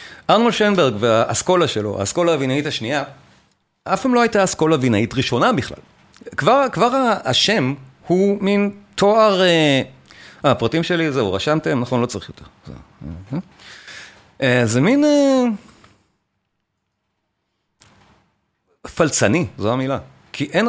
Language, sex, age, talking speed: Hebrew, male, 40-59, 120 wpm